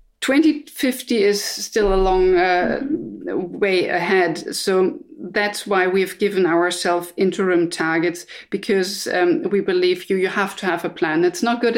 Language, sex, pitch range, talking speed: English, female, 185-240 Hz, 155 wpm